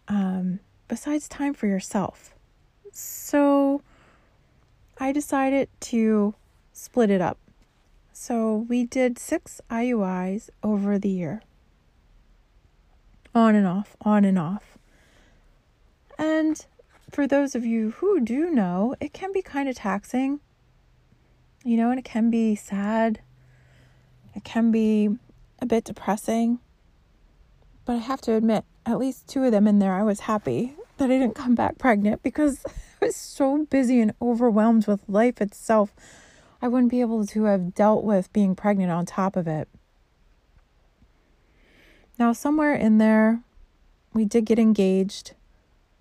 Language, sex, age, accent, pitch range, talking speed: English, female, 30-49, American, 200-255 Hz, 140 wpm